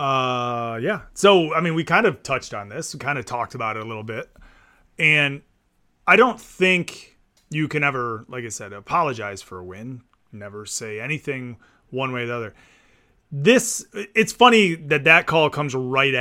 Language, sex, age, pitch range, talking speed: English, male, 30-49, 115-170 Hz, 185 wpm